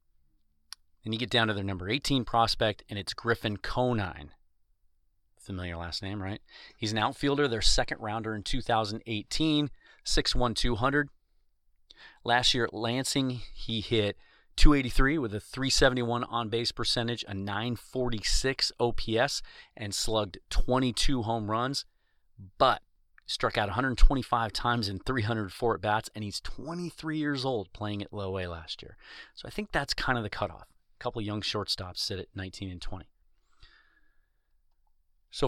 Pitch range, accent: 95-120 Hz, American